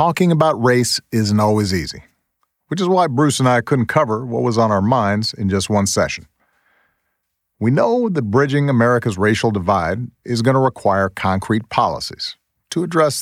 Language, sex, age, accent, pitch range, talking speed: English, male, 50-69, American, 95-130 Hz, 170 wpm